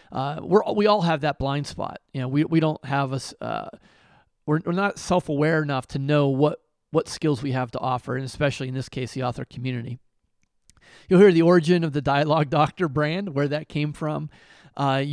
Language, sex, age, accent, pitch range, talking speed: English, male, 30-49, American, 130-155 Hz, 200 wpm